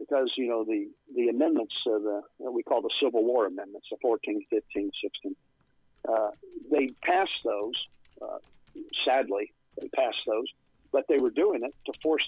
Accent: American